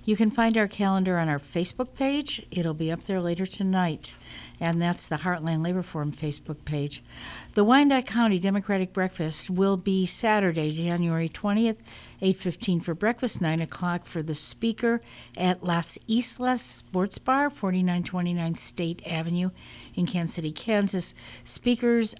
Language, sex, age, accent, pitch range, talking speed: English, female, 60-79, American, 165-200 Hz, 145 wpm